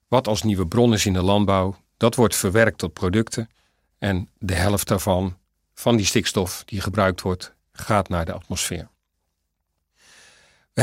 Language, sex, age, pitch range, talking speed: Dutch, male, 50-69, 100-155 Hz, 155 wpm